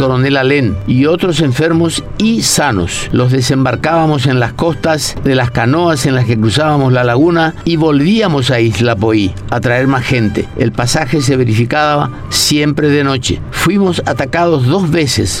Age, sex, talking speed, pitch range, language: 50-69, male, 160 wpm, 125-155 Hz, Spanish